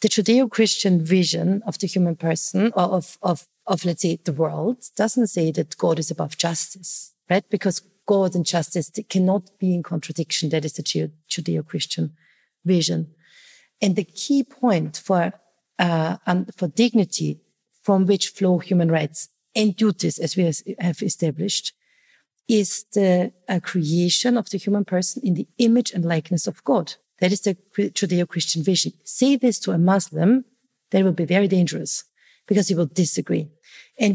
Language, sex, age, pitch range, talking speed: German, female, 40-59, 170-215 Hz, 160 wpm